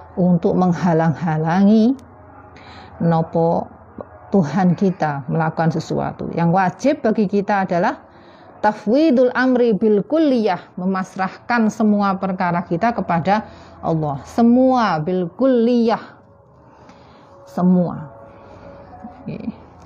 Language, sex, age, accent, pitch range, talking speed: Indonesian, female, 30-49, native, 170-210 Hz, 75 wpm